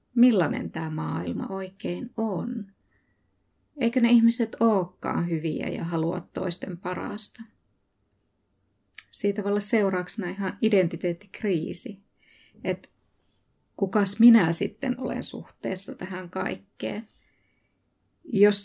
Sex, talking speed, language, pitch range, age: female, 90 wpm, Finnish, 160-205 Hz, 30-49